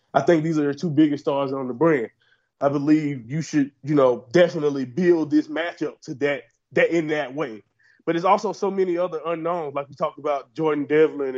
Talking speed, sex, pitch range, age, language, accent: 210 wpm, male, 140-165 Hz, 20-39, English, American